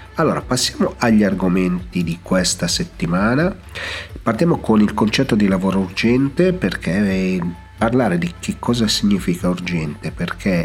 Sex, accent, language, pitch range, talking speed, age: male, native, Italian, 85-105 Hz, 125 wpm, 40-59